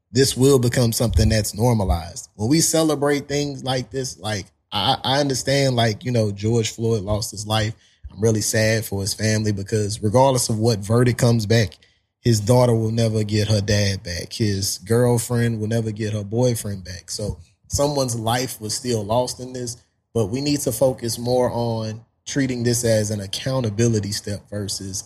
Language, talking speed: English, 180 wpm